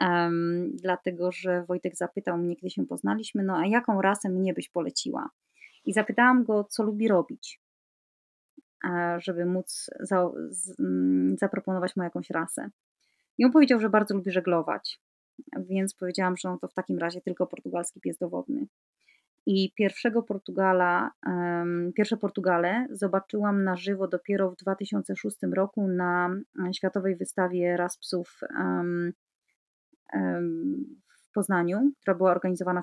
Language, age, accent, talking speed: Polish, 30-49, native, 135 wpm